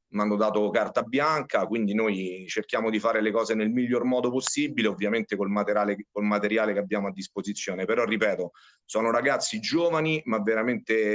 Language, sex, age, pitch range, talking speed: Italian, male, 40-59, 105-115 Hz, 165 wpm